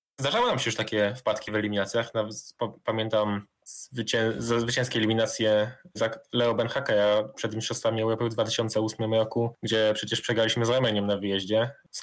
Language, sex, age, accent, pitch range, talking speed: Polish, male, 10-29, native, 105-115 Hz, 150 wpm